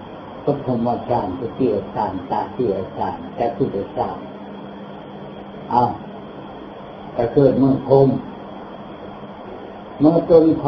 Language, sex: Thai, male